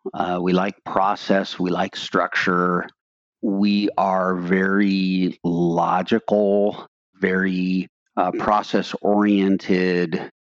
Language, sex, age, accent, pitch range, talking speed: English, male, 50-69, American, 90-100 Hz, 80 wpm